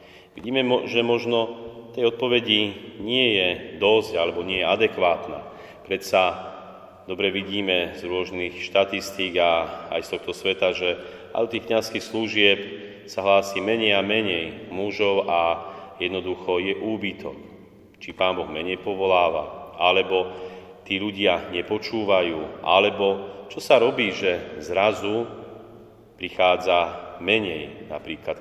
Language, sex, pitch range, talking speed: Slovak, male, 95-115 Hz, 120 wpm